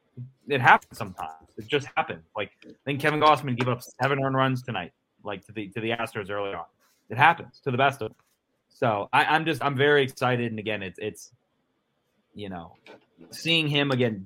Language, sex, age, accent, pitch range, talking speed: English, male, 30-49, American, 105-130 Hz, 200 wpm